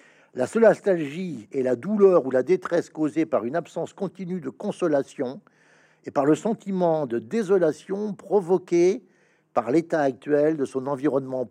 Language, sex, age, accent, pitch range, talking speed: French, male, 60-79, French, 150-220 Hz, 150 wpm